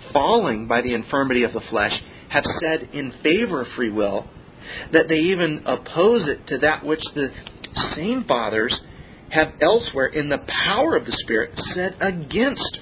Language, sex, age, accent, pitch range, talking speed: English, male, 40-59, American, 125-160 Hz, 165 wpm